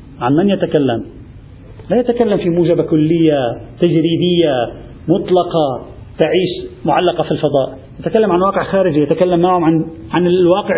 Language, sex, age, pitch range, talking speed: Arabic, male, 50-69, 150-195 Hz, 120 wpm